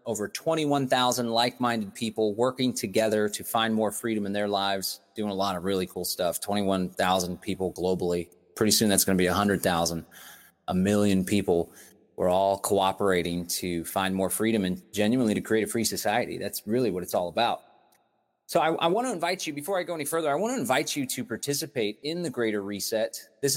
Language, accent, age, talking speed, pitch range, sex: English, American, 30-49, 195 wpm, 105-130 Hz, male